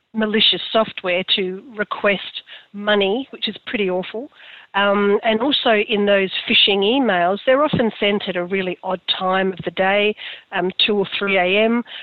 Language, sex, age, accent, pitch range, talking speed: English, female, 40-59, Australian, 190-225 Hz, 160 wpm